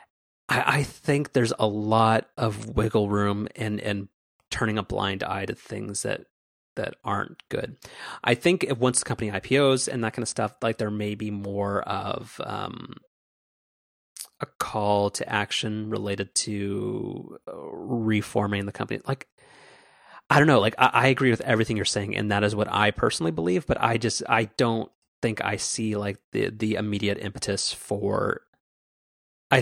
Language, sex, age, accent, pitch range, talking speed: English, male, 30-49, American, 100-120 Hz, 165 wpm